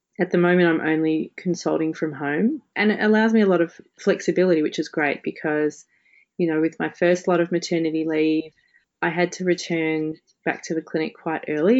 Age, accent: 30-49, Australian